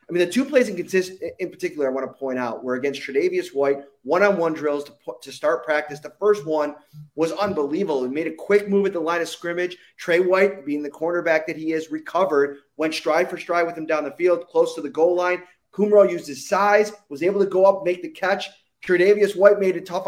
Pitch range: 150-205 Hz